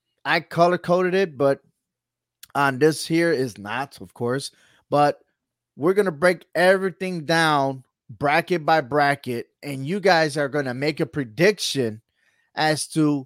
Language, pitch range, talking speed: English, 135-165 Hz, 150 wpm